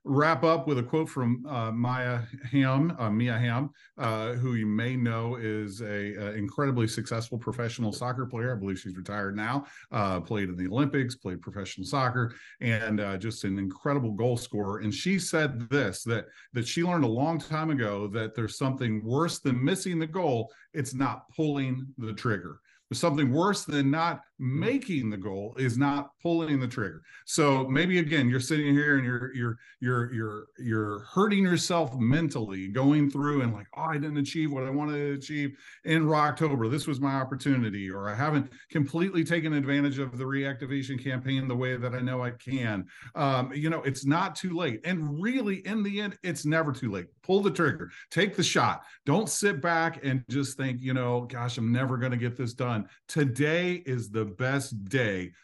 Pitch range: 115-150 Hz